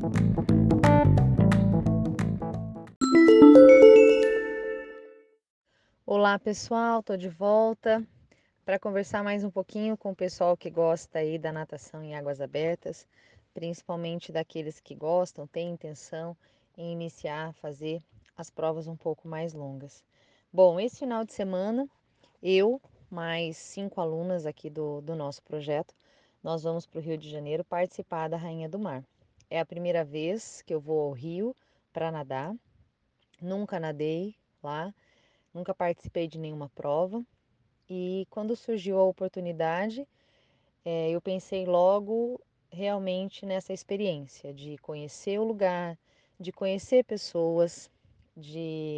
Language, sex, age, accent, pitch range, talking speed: Portuguese, female, 20-39, Brazilian, 155-195 Hz, 125 wpm